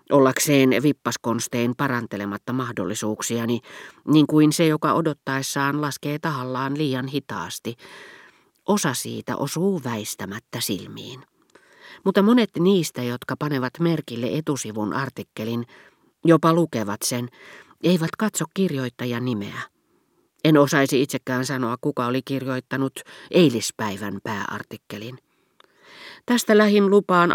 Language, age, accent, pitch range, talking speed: Finnish, 40-59, native, 120-155 Hz, 100 wpm